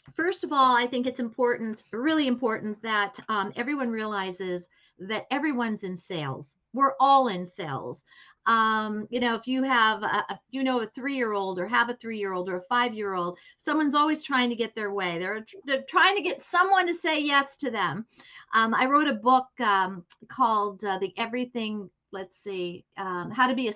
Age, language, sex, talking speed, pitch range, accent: 50-69, English, female, 190 wpm, 210-265 Hz, American